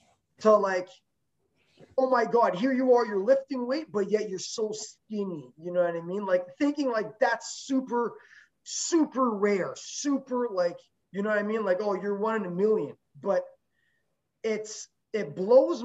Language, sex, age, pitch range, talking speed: English, male, 20-39, 180-255 Hz, 175 wpm